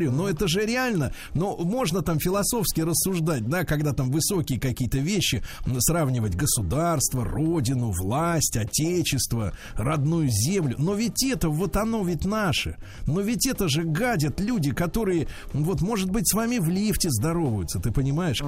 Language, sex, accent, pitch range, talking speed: Russian, male, native, 135-195 Hz, 150 wpm